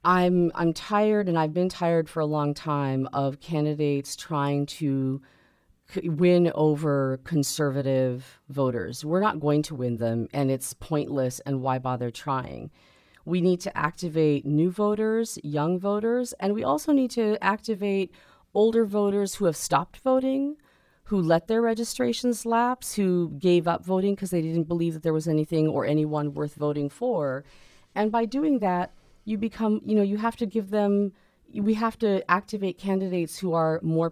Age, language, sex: 40-59, English, female